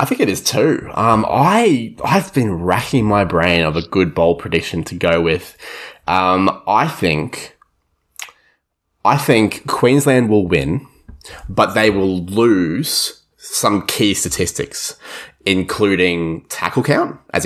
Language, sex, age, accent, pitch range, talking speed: English, male, 20-39, Australian, 85-110 Hz, 135 wpm